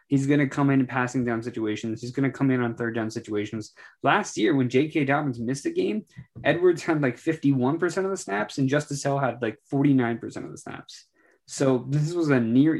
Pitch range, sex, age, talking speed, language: 115-145 Hz, male, 20-39, 220 wpm, English